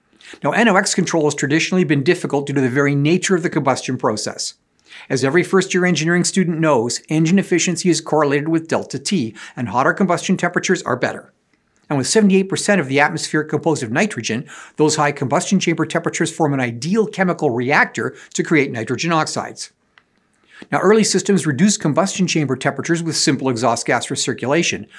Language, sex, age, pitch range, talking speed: English, male, 50-69, 135-180 Hz, 170 wpm